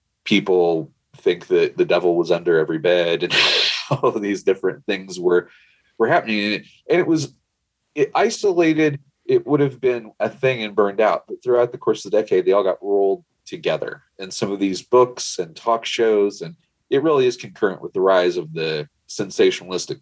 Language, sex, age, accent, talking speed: English, male, 30-49, American, 195 wpm